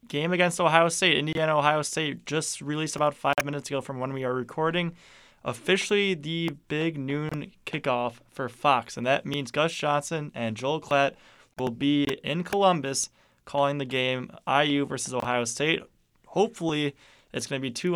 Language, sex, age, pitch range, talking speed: English, male, 20-39, 125-155 Hz, 165 wpm